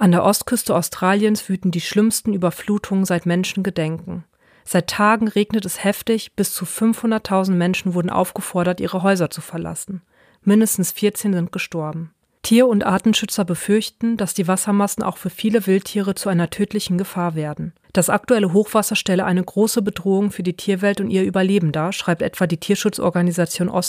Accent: German